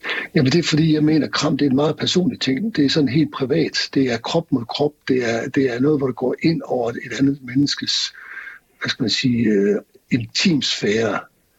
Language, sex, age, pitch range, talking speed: Danish, male, 60-79, 120-145 Hz, 225 wpm